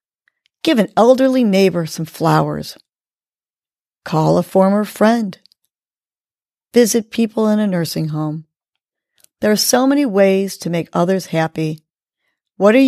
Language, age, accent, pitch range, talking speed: English, 40-59, American, 165-215 Hz, 125 wpm